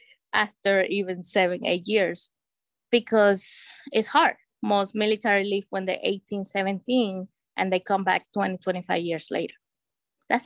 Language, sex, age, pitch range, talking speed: English, female, 20-39, 190-230 Hz, 140 wpm